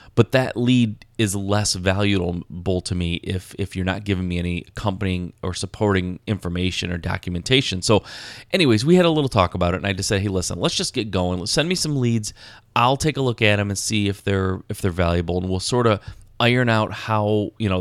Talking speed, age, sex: 225 wpm, 30-49, male